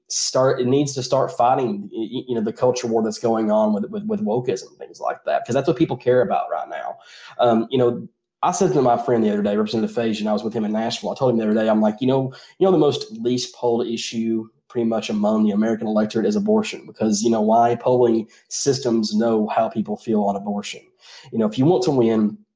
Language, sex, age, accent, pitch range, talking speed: English, male, 20-39, American, 110-130 Hz, 245 wpm